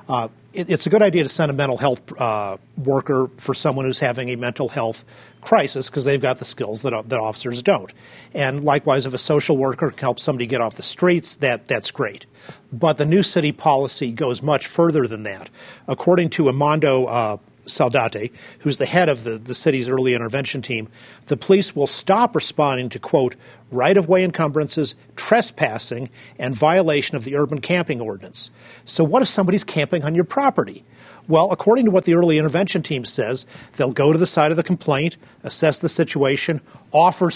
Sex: male